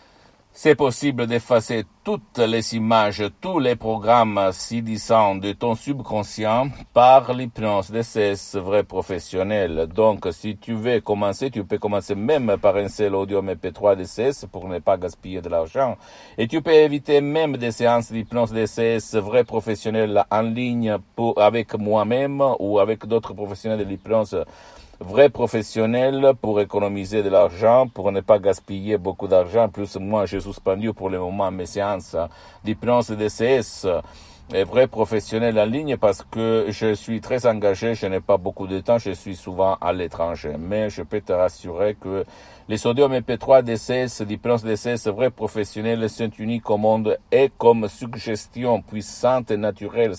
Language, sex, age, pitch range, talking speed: Italian, male, 60-79, 100-115 Hz, 160 wpm